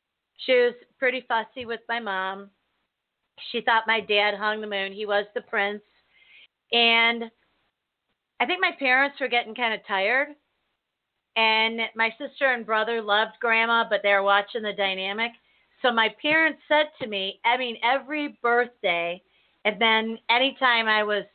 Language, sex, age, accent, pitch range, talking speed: English, female, 40-59, American, 205-250 Hz, 155 wpm